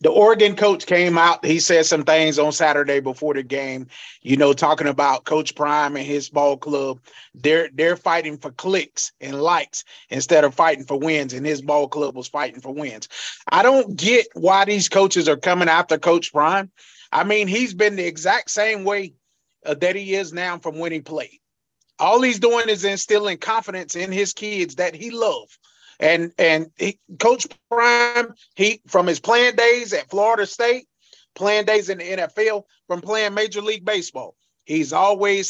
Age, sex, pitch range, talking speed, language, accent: 30-49, male, 155-210 Hz, 185 wpm, English, American